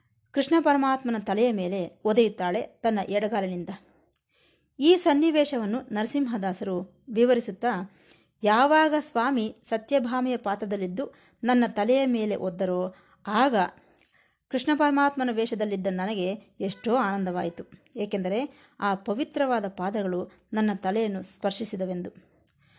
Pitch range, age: 190-250 Hz, 20-39